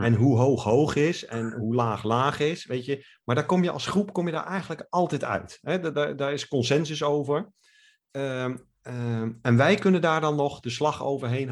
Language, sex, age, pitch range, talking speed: Dutch, male, 50-69, 110-140 Hz, 215 wpm